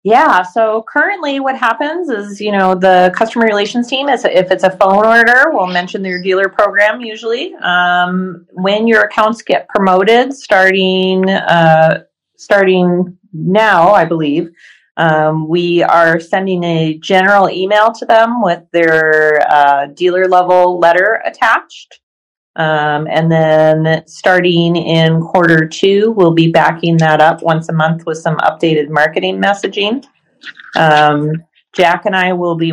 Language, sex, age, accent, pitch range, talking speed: English, female, 30-49, American, 160-200 Hz, 145 wpm